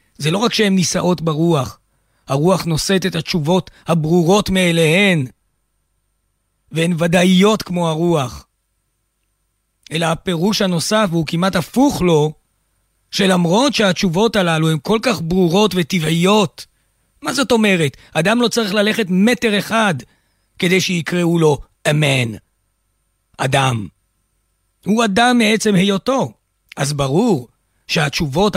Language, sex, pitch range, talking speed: Hebrew, male, 135-195 Hz, 110 wpm